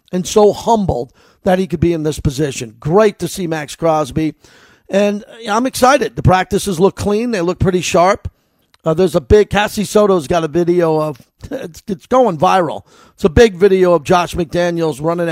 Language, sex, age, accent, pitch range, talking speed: English, male, 50-69, American, 170-205 Hz, 190 wpm